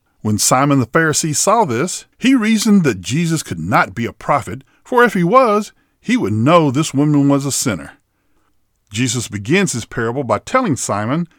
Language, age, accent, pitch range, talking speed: English, 50-69, American, 115-185 Hz, 180 wpm